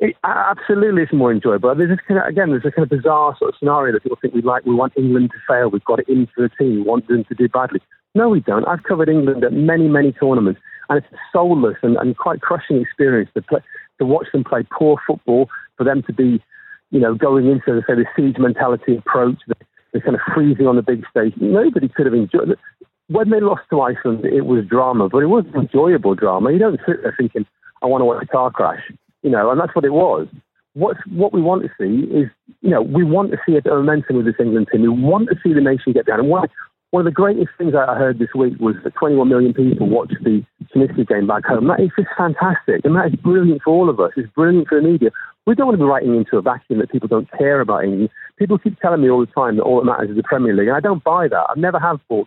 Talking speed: 265 wpm